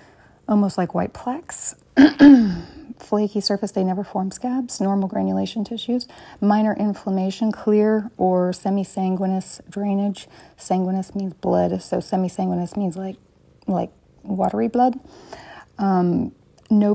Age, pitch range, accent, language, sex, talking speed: 30-49, 180-215 Hz, American, English, female, 110 wpm